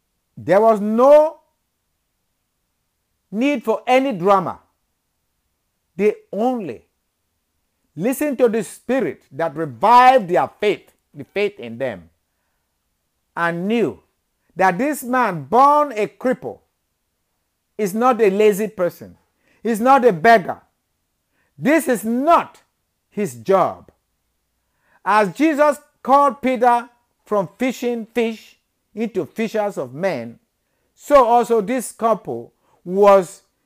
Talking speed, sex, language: 105 wpm, male, English